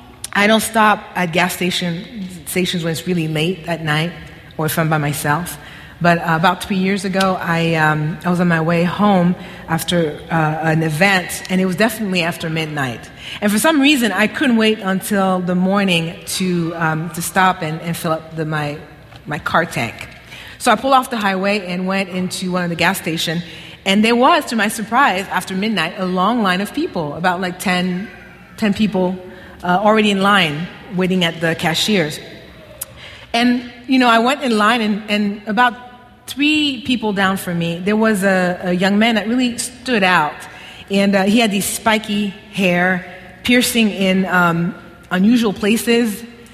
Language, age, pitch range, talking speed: English, 30-49, 170-210 Hz, 180 wpm